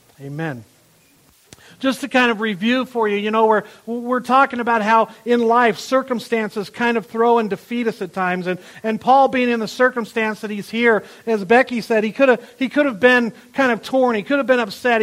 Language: English